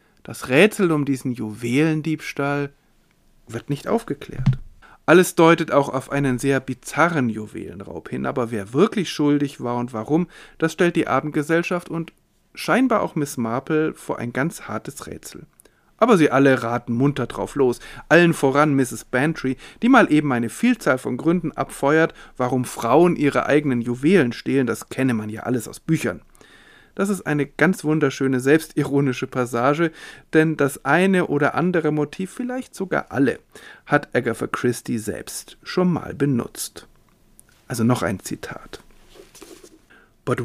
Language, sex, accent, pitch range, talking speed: German, male, German, 125-175 Hz, 145 wpm